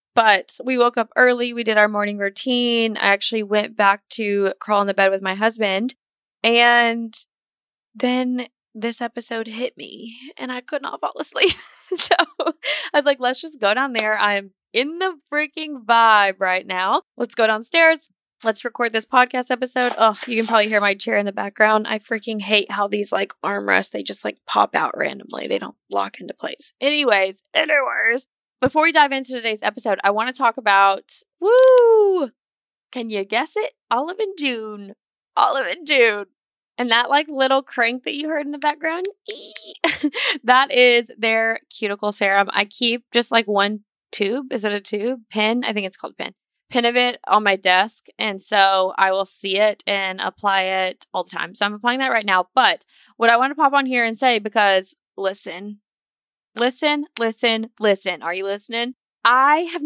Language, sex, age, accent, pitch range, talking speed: English, female, 20-39, American, 205-260 Hz, 185 wpm